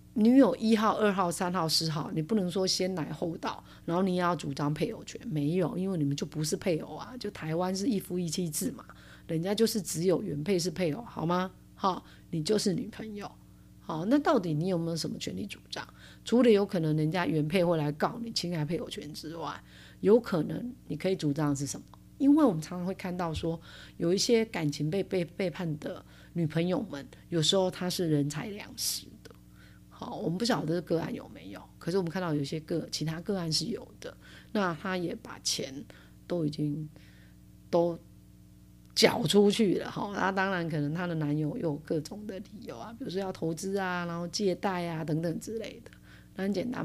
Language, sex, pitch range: Chinese, female, 155-190 Hz